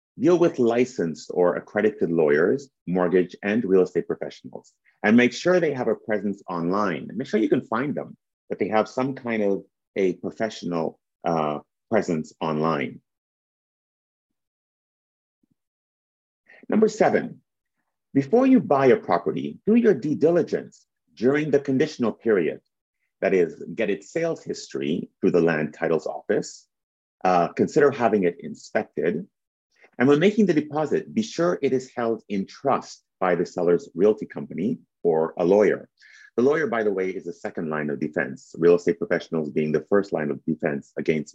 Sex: male